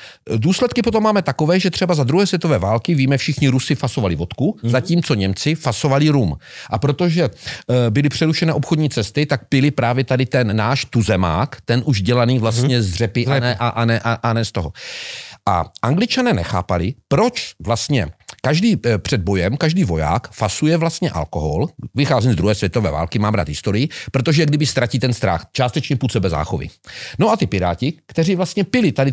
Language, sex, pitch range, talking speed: Slovak, male, 115-160 Hz, 180 wpm